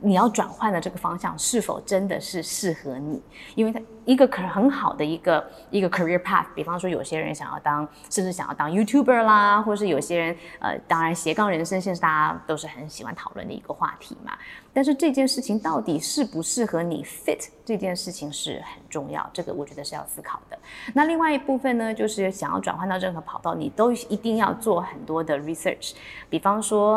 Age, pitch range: 20-39, 165-215 Hz